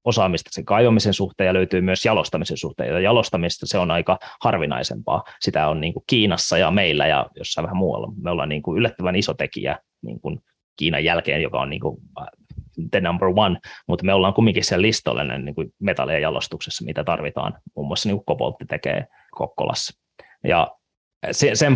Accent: native